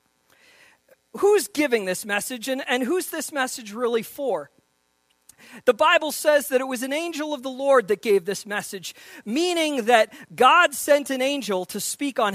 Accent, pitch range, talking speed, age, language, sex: American, 190-280 Hz, 170 wpm, 40-59, English, male